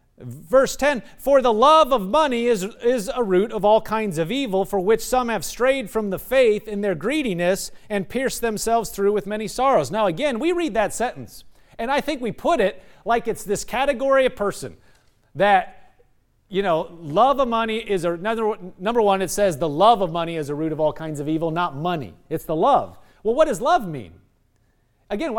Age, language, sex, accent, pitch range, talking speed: 40-59, English, male, American, 175-235 Hz, 205 wpm